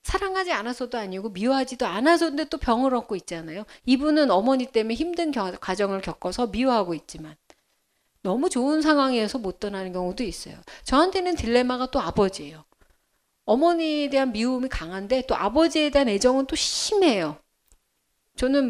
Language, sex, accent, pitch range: Korean, female, native, 205-300 Hz